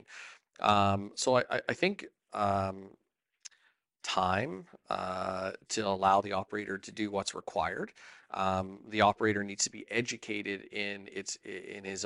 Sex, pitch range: male, 95-110 Hz